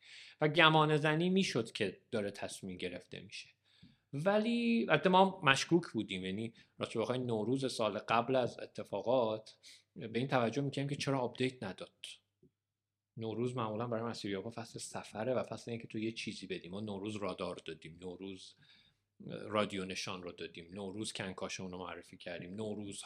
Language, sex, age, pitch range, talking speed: Persian, male, 40-59, 100-130 Hz, 155 wpm